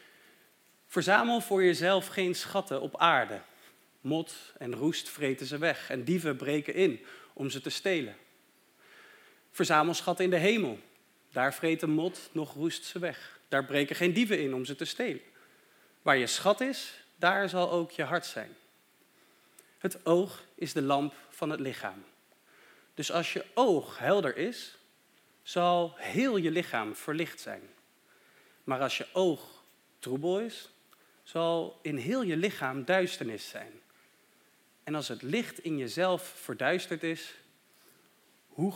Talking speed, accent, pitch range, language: 145 wpm, Dutch, 150-210 Hz, Dutch